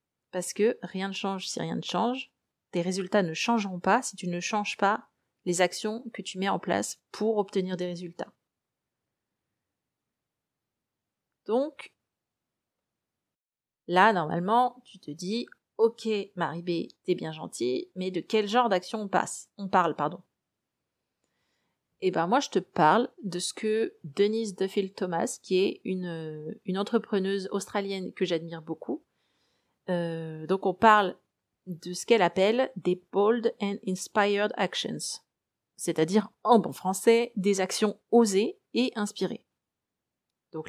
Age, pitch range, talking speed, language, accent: 30-49, 180-230 Hz, 145 wpm, French, French